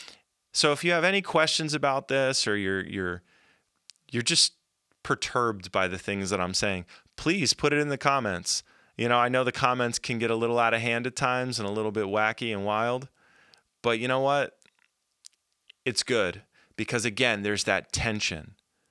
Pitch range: 100-125 Hz